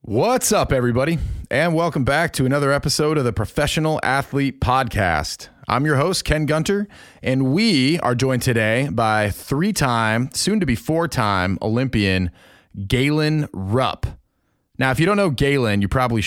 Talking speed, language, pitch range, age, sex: 145 wpm, English, 100-145 Hz, 30-49, male